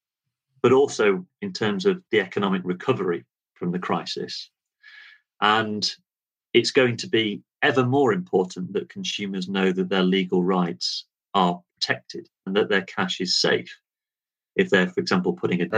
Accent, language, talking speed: British, English, 150 wpm